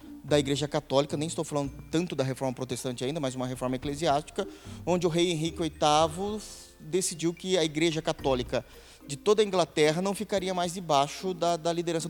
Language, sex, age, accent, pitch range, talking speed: Portuguese, male, 20-39, Brazilian, 150-195 Hz, 180 wpm